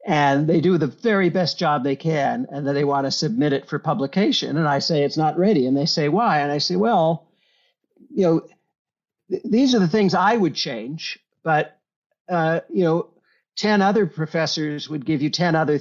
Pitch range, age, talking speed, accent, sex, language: 150-195 Hz, 60-79, 205 wpm, American, male, English